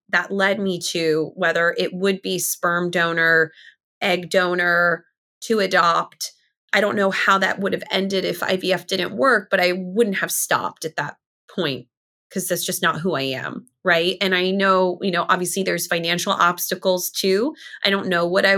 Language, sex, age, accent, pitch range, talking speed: English, female, 20-39, American, 175-200 Hz, 185 wpm